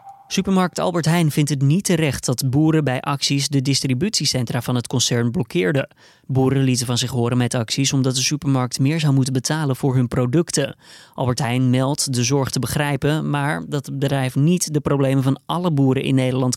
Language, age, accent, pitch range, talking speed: Dutch, 20-39, Dutch, 130-155 Hz, 190 wpm